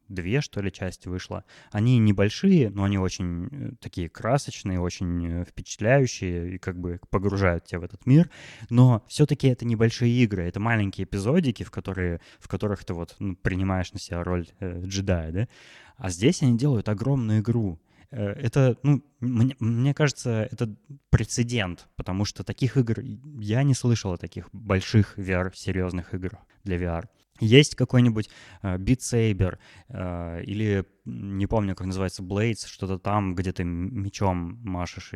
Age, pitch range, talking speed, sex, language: 20-39, 90-115 Hz, 155 wpm, male, Russian